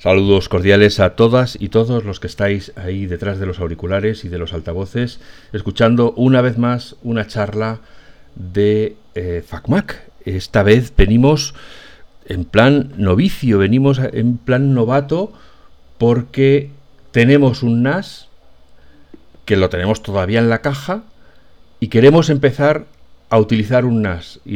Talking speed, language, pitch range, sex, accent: 135 wpm, Spanish, 95-125 Hz, male, Spanish